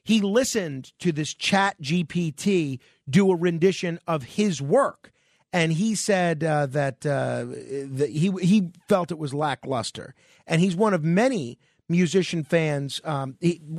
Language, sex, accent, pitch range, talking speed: English, male, American, 145-195 Hz, 145 wpm